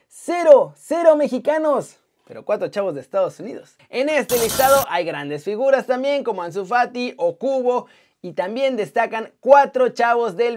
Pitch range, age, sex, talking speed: 230-275 Hz, 30-49, male, 150 wpm